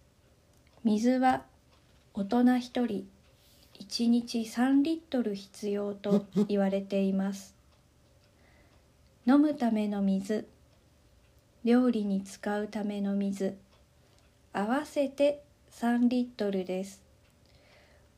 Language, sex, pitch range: Japanese, female, 200-250 Hz